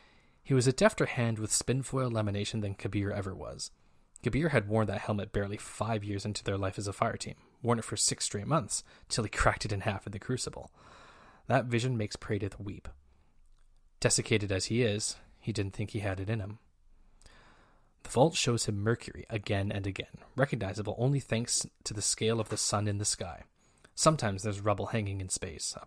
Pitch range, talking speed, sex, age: 100-115 Hz, 200 wpm, male, 20-39